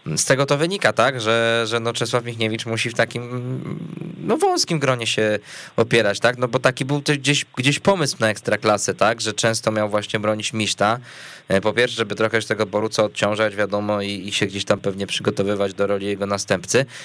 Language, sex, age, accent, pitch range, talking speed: Polish, male, 20-39, native, 100-125 Hz, 195 wpm